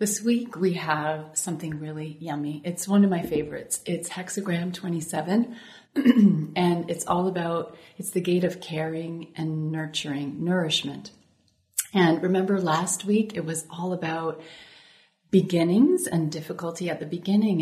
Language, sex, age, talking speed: English, female, 30-49, 140 wpm